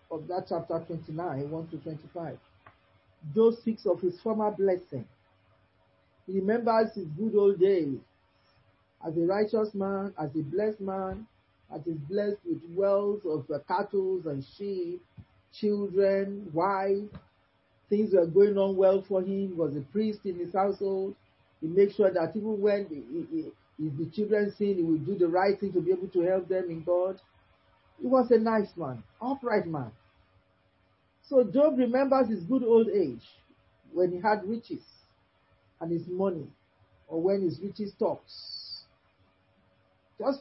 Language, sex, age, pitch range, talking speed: English, male, 40-59, 140-210 Hz, 160 wpm